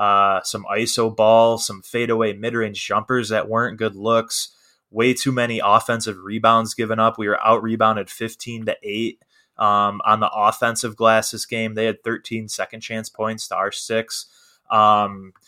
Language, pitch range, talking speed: English, 105-115 Hz, 165 wpm